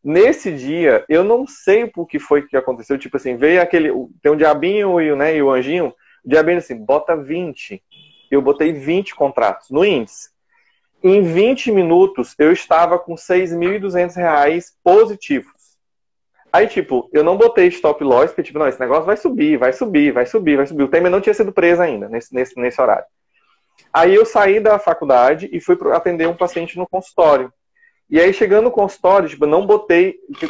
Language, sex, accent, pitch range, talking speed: Portuguese, male, Brazilian, 150-220 Hz, 185 wpm